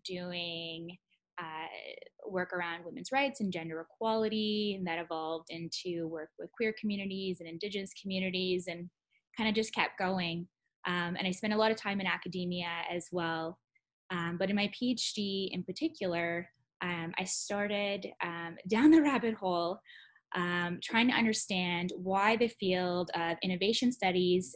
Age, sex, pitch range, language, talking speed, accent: 10-29, female, 175-205 Hz, English, 155 wpm, American